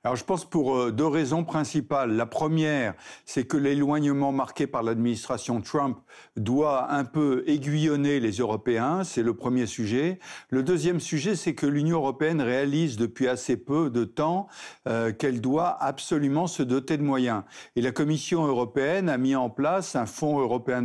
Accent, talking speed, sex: French, 165 wpm, male